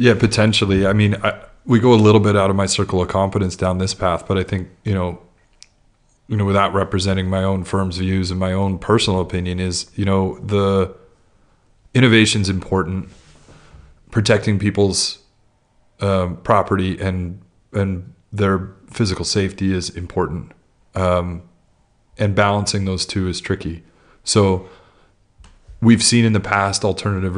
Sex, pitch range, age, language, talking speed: male, 90-100 Hz, 30-49, English, 150 wpm